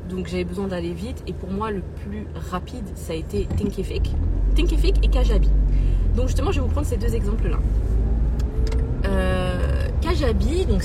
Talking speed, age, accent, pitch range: 170 wpm, 20-39, French, 75-100 Hz